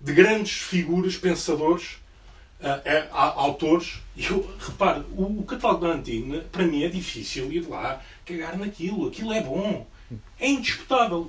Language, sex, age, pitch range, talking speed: Portuguese, male, 20-39, 155-205 Hz, 140 wpm